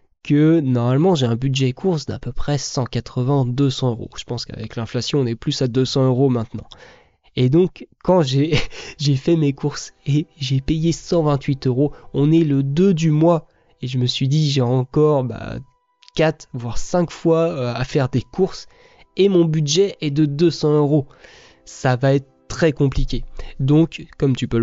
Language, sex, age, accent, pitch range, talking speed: French, male, 20-39, French, 125-150 Hz, 175 wpm